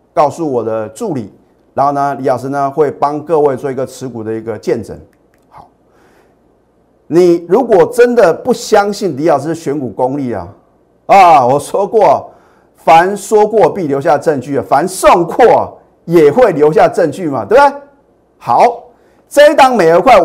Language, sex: Chinese, male